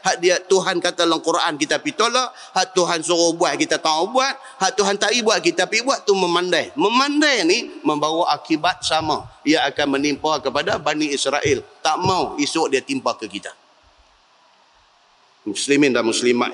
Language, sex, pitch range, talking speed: Malay, male, 140-195 Hz, 175 wpm